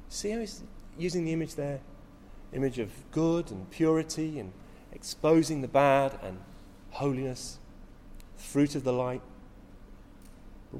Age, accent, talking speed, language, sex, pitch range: 40-59, British, 130 wpm, English, male, 100-150 Hz